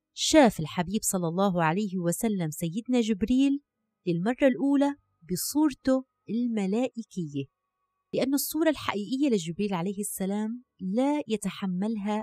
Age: 30-49